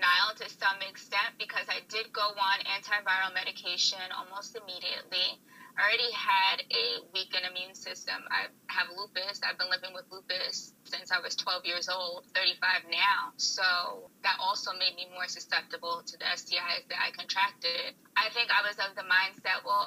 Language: English